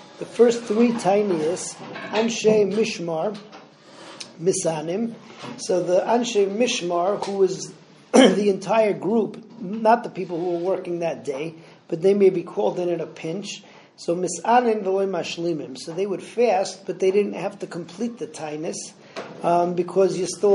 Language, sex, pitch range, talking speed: English, male, 170-210 Hz, 150 wpm